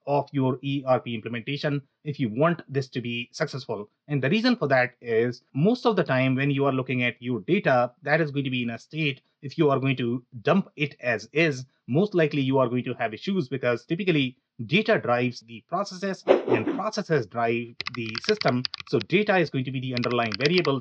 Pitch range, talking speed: 125-155 Hz, 210 wpm